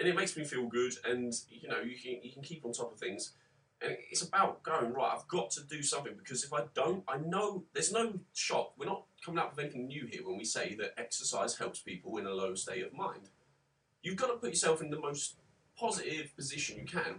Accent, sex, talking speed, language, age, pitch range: British, male, 240 wpm, English, 30-49, 120-155 Hz